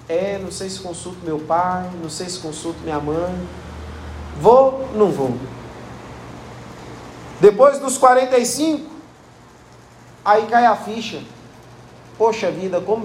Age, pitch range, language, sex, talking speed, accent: 40-59, 180-245 Hz, Portuguese, male, 120 wpm, Brazilian